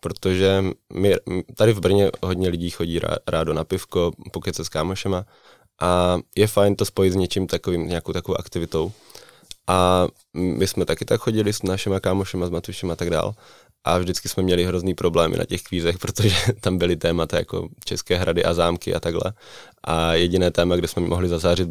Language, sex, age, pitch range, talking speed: Czech, male, 20-39, 85-95 Hz, 190 wpm